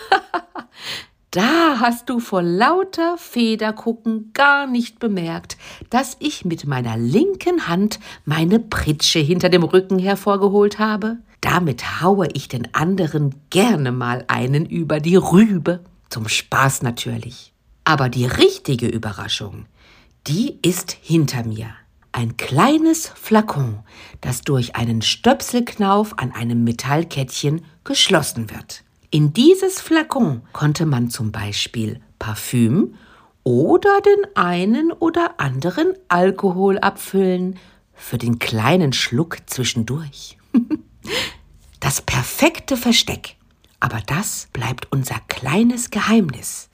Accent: German